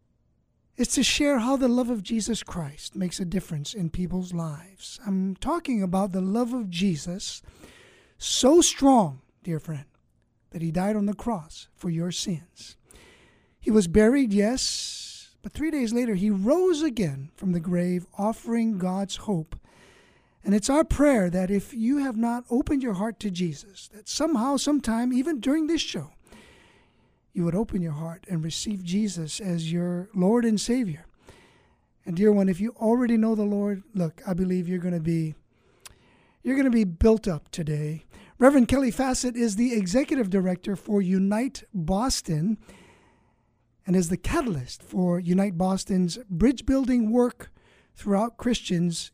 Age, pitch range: 50-69, 180-245 Hz